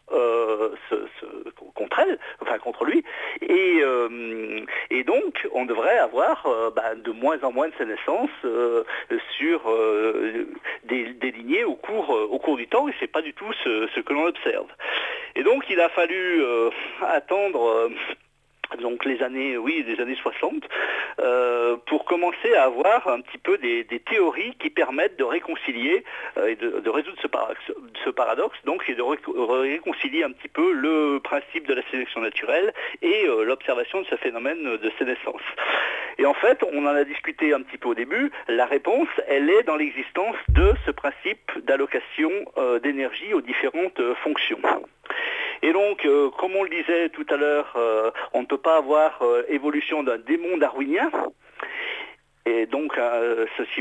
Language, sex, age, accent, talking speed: French, male, 50-69, French, 180 wpm